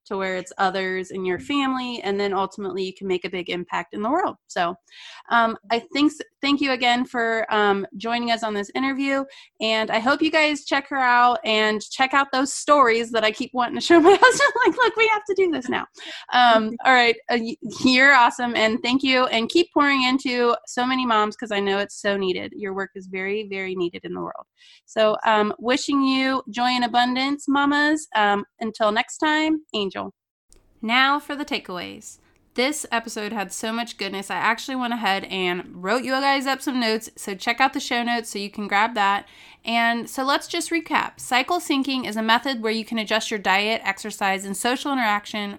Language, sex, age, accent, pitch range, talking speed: English, female, 20-39, American, 205-265 Hz, 205 wpm